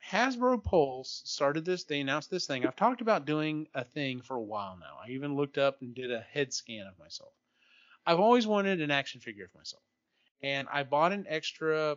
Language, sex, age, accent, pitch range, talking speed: English, male, 30-49, American, 125-155 Hz, 210 wpm